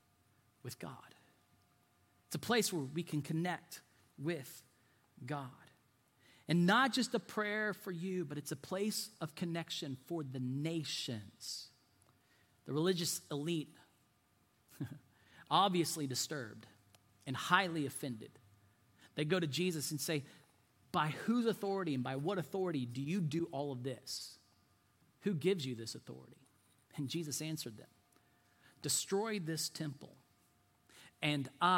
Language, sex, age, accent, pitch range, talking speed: English, male, 40-59, American, 125-180 Hz, 125 wpm